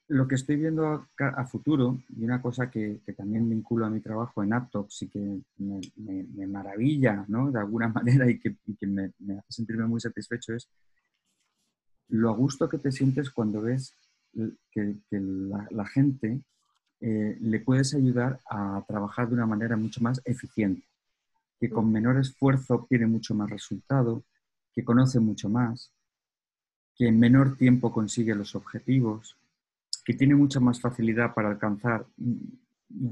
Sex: male